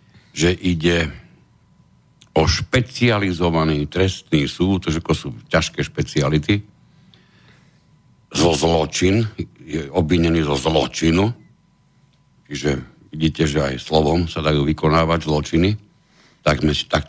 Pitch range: 75-85 Hz